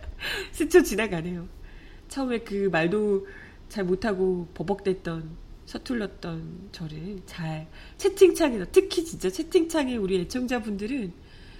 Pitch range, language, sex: 175-235 Hz, Korean, female